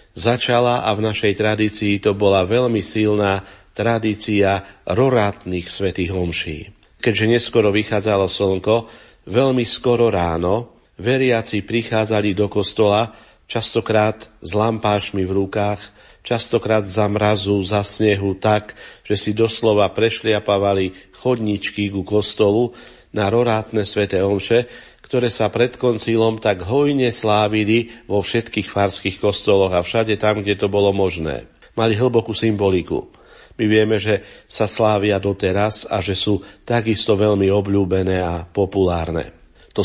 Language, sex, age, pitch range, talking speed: Slovak, male, 50-69, 100-115 Hz, 125 wpm